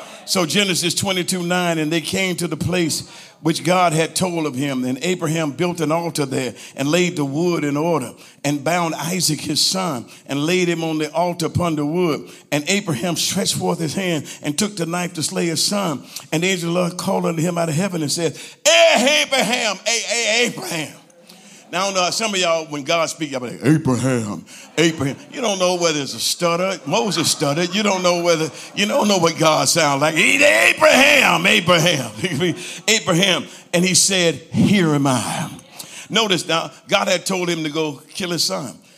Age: 50-69